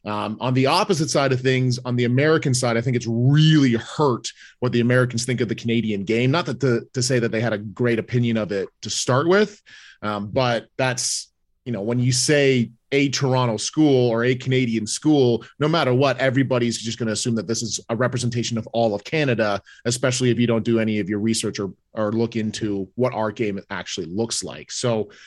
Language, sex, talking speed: English, male, 220 wpm